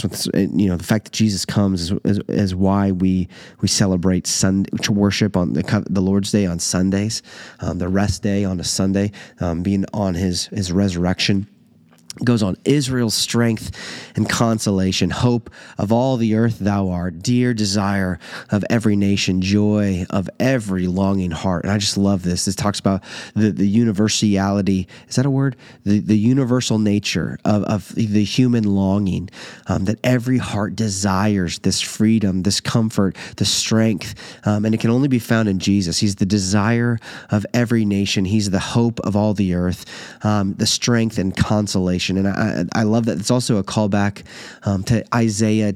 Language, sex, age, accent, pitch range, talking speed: English, male, 30-49, American, 95-110 Hz, 175 wpm